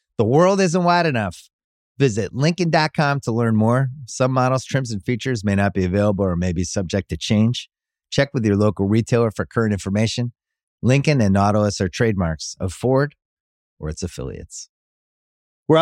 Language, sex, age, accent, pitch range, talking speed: English, male, 30-49, American, 100-135 Hz, 165 wpm